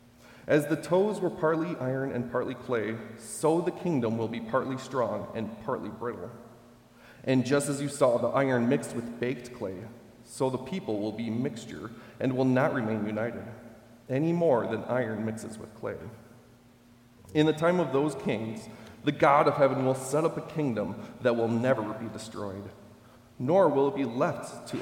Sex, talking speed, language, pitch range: male, 180 wpm, English, 115-145 Hz